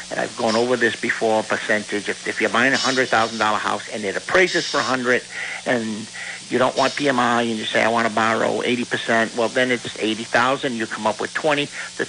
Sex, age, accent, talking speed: male, 60-79, American, 210 wpm